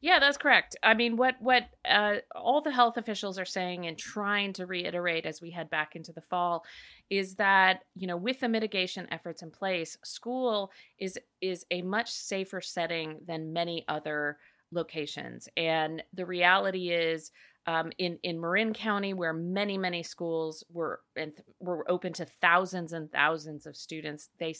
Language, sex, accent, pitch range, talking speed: English, female, American, 165-205 Hz, 170 wpm